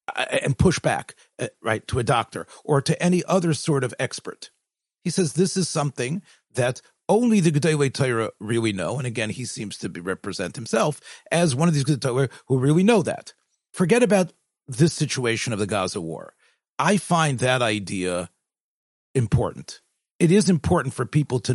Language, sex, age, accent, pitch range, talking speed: English, male, 40-59, American, 110-155 Hz, 170 wpm